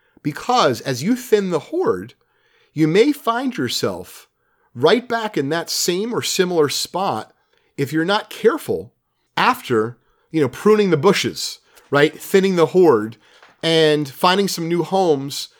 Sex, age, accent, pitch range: male, 30-49, American, 135-165 Hz